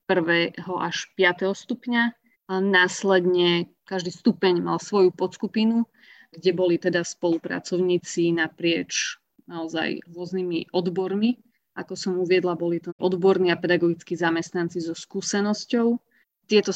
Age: 30-49